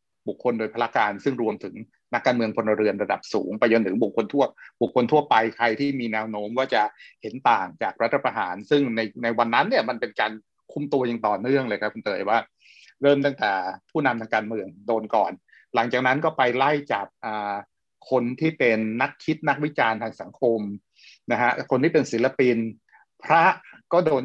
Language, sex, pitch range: Thai, male, 110-140 Hz